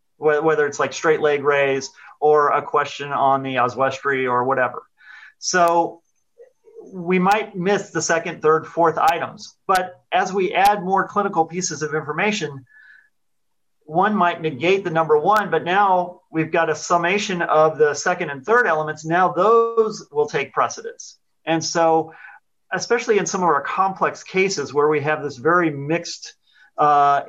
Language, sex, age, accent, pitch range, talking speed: English, male, 40-59, American, 145-180 Hz, 155 wpm